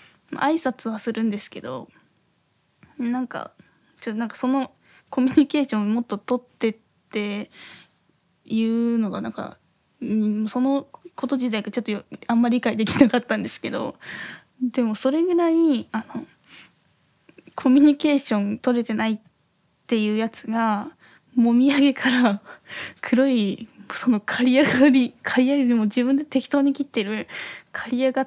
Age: 10-29